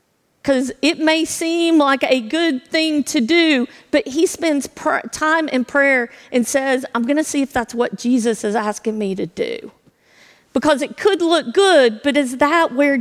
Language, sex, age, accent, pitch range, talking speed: English, female, 40-59, American, 235-300 Hz, 185 wpm